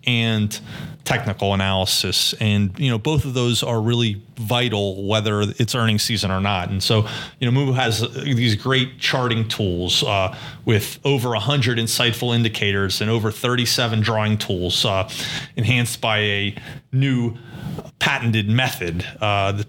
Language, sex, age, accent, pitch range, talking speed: English, male, 30-49, American, 105-130 Hz, 145 wpm